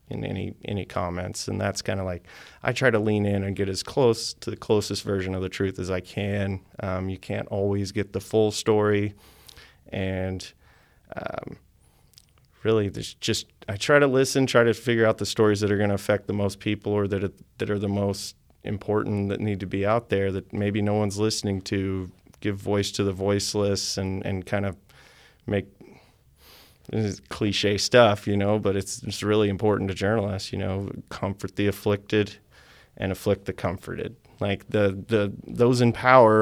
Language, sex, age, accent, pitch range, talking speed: English, male, 30-49, American, 95-105 Hz, 185 wpm